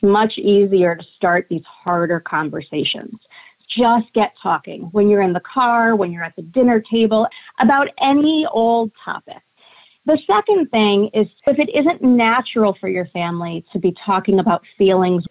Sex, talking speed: female, 160 wpm